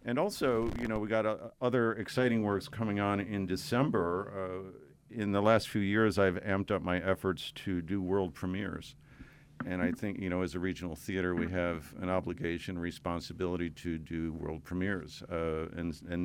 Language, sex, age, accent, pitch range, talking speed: English, male, 50-69, American, 90-110 Hz, 185 wpm